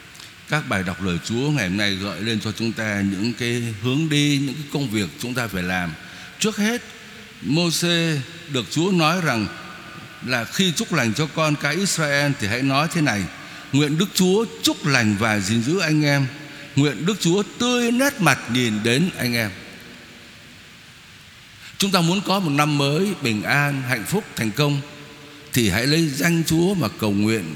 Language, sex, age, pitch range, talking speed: Vietnamese, male, 60-79, 125-185 Hz, 185 wpm